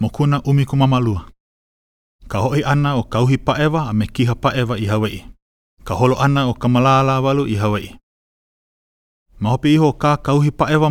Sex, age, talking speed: male, 30-49, 140 wpm